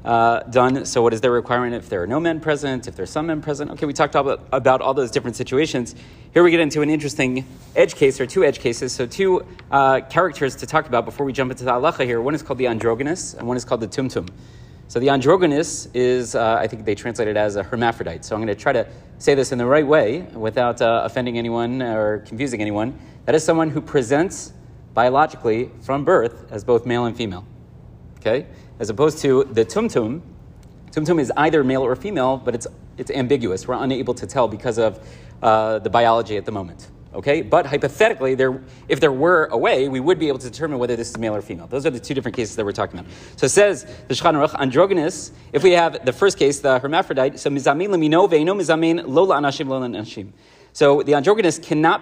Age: 30-49